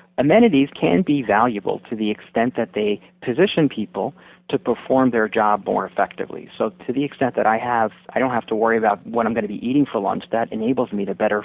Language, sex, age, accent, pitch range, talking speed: English, male, 40-59, American, 105-145 Hz, 225 wpm